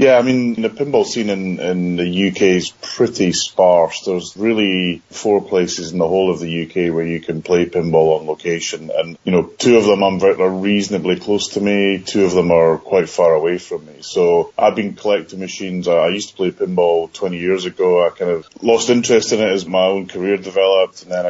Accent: British